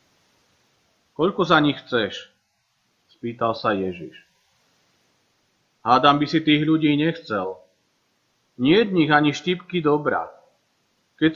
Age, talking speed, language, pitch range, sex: 40-59, 95 wpm, Slovak, 120-165 Hz, male